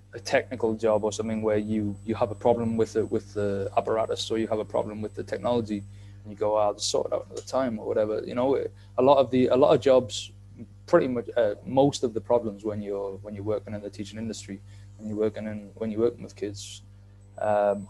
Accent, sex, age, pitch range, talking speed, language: British, male, 20-39, 100-120 Hz, 250 wpm, English